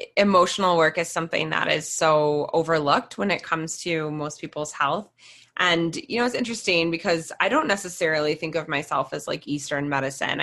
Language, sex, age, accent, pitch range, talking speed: English, female, 20-39, American, 135-165 Hz, 180 wpm